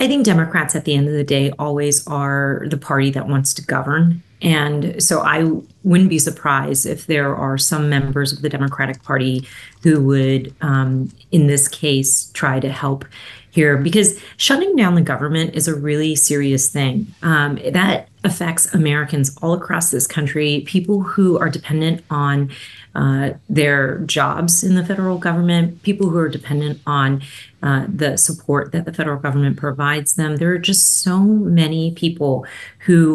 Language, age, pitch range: English, 30-49, 140-165 Hz